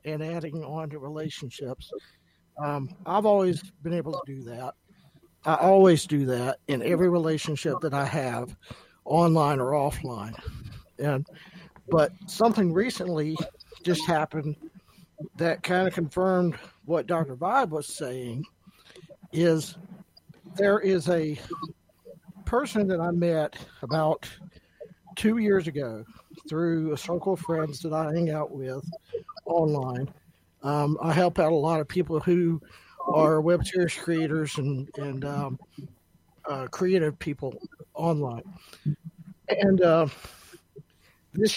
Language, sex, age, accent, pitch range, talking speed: English, male, 60-79, American, 150-180 Hz, 125 wpm